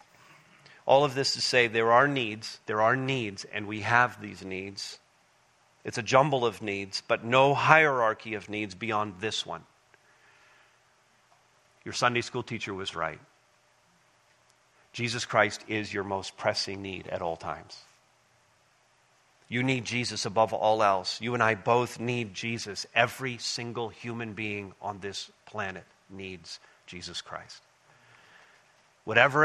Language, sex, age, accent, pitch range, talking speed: English, male, 40-59, American, 110-165 Hz, 140 wpm